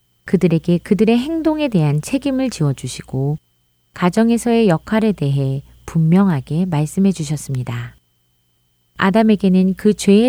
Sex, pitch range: female, 130-200 Hz